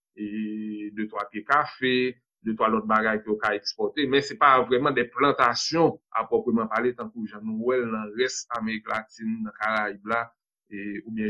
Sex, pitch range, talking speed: male, 110-145 Hz, 185 wpm